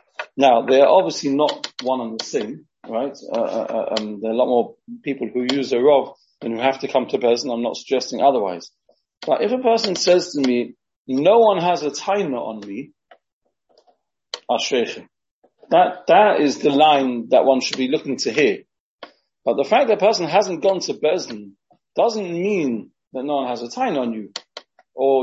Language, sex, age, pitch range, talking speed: English, male, 40-59, 130-205 Hz, 190 wpm